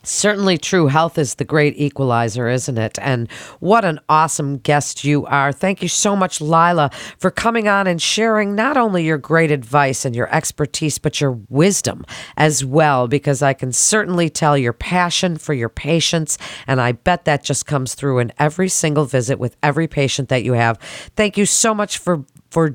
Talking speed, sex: 190 wpm, female